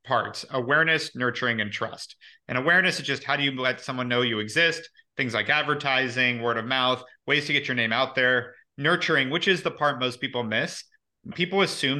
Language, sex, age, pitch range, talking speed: English, male, 30-49, 115-145 Hz, 200 wpm